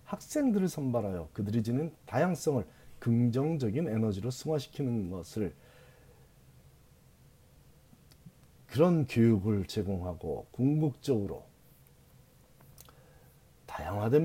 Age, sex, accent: 40-59, male, native